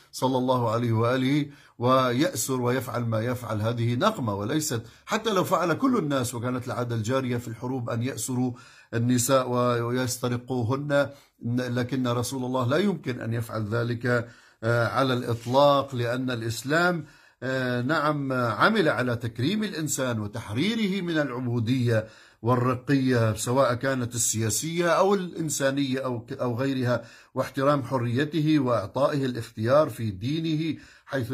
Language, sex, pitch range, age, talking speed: Arabic, male, 120-145 Hz, 50-69, 115 wpm